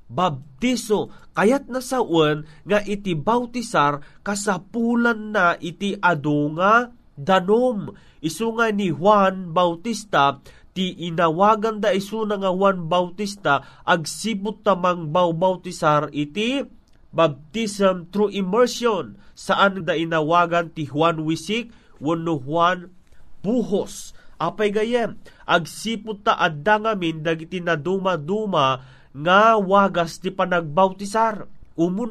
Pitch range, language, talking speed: 165-210 Hz, Filipino, 105 wpm